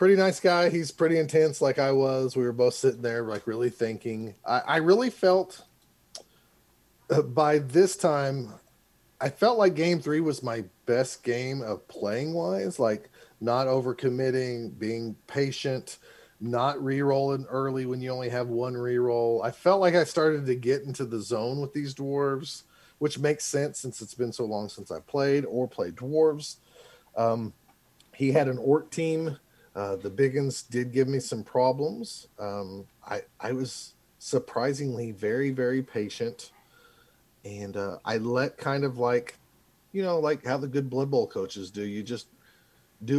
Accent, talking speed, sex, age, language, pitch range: American, 165 wpm, male, 40-59, English, 115-150 Hz